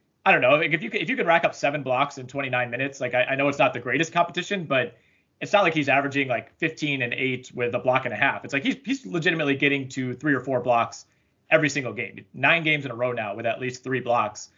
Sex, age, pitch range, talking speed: male, 30-49, 125-150 Hz, 270 wpm